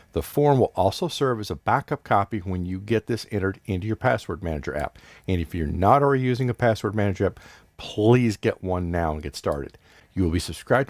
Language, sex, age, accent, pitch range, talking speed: English, male, 50-69, American, 95-125 Hz, 220 wpm